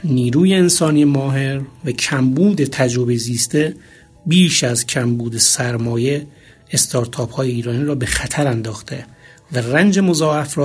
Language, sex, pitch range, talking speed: Persian, male, 125-160 Hz, 125 wpm